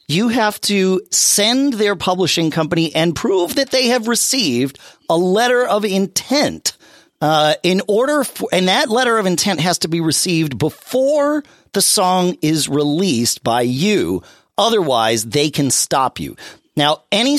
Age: 40-59